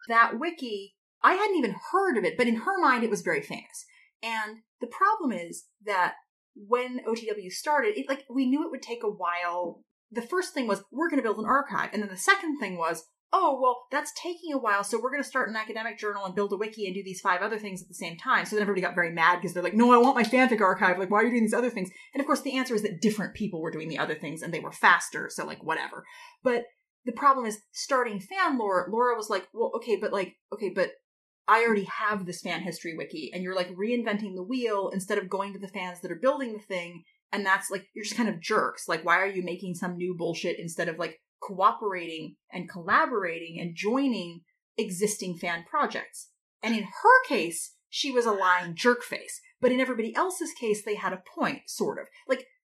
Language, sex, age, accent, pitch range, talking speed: English, female, 30-49, American, 185-265 Hz, 235 wpm